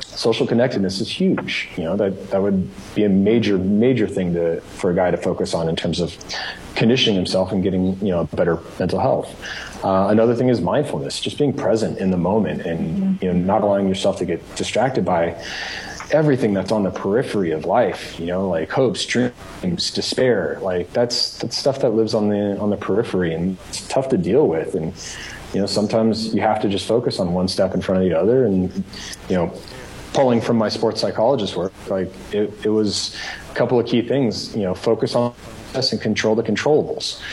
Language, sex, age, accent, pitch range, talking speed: English, male, 30-49, American, 95-115 Hz, 205 wpm